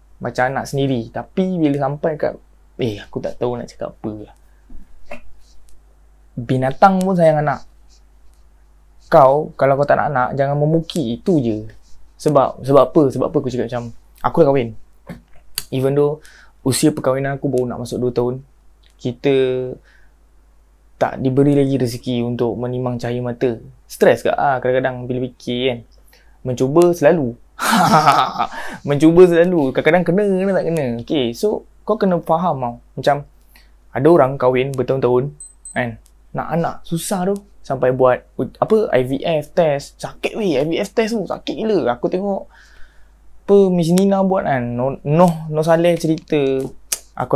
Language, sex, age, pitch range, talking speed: Malay, male, 20-39, 120-155 Hz, 145 wpm